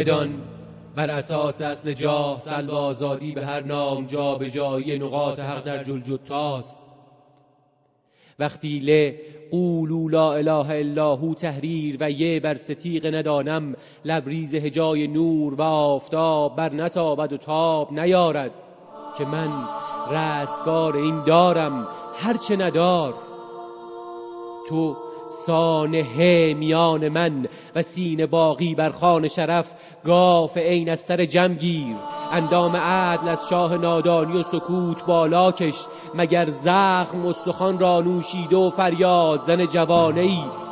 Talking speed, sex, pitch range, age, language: 115 wpm, male, 150-170 Hz, 30-49, Persian